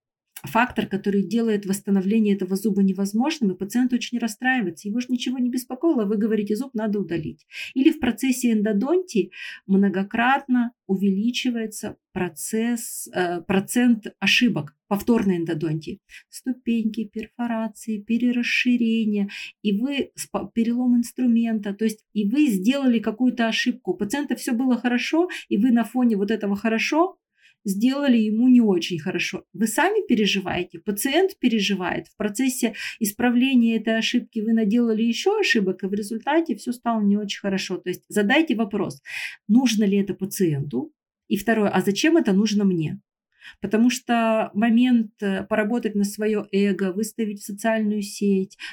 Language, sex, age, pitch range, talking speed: Russian, female, 40-59, 200-245 Hz, 140 wpm